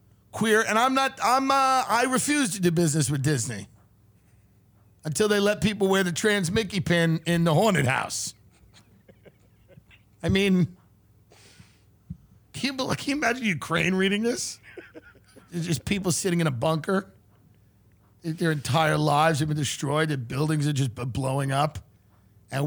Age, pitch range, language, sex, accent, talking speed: 50-69, 110-180 Hz, English, male, American, 145 wpm